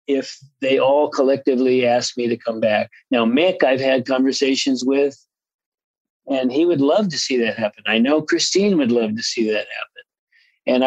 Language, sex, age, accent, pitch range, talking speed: English, male, 50-69, American, 115-145 Hz, 180 wpm